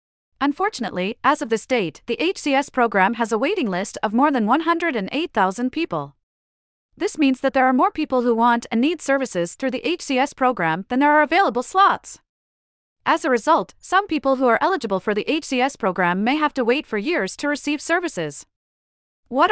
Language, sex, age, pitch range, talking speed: English, female, 40-59, 200-305 Hz, 185 wpm